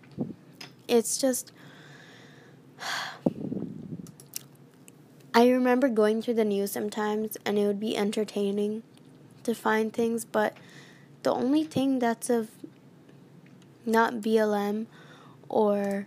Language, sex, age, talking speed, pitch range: English, female, 10-29, 95 wpm, 205-230 Hz